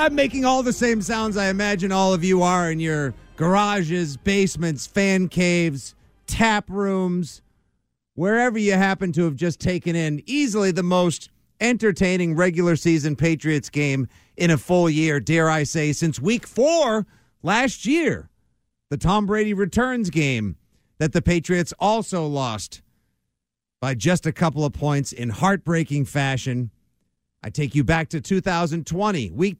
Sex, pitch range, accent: male, 140-200 Hz, American